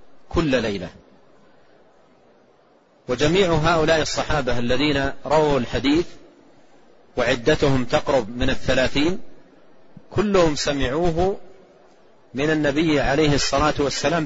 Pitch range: 135-160 Hz